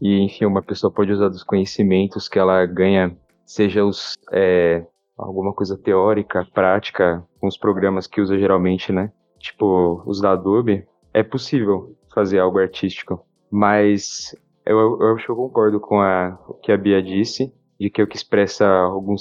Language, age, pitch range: Portuguese, 20-39, 95-115 Hz